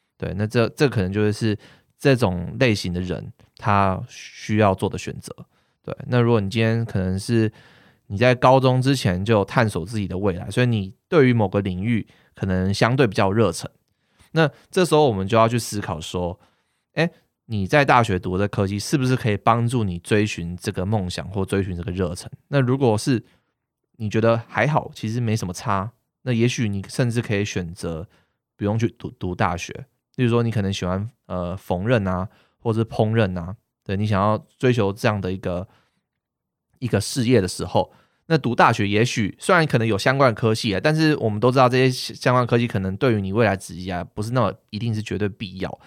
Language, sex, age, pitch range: Chinese, male, 20-39, 95-120 Hz